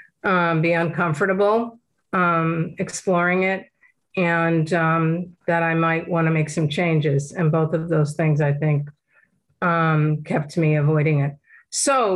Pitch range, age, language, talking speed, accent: 165-195 Hz, 50-69, English, 145 wpm, American